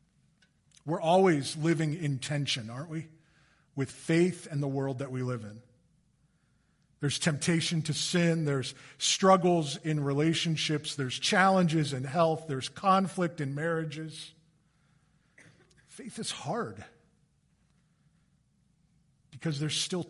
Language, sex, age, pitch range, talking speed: English, male, 50-69, 140-165 Hz, 115 wpm